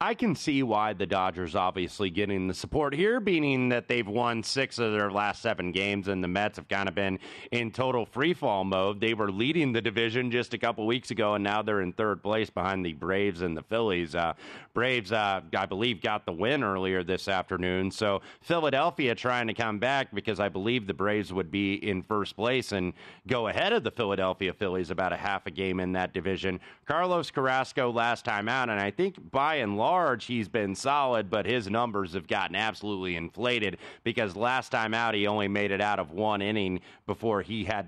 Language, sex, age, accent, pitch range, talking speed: English, male, 30-49, American, 95-120 Hz, 210 wpm